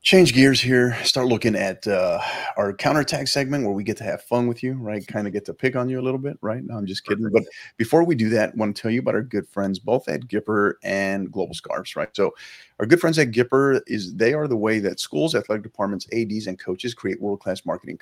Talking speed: 255 wpm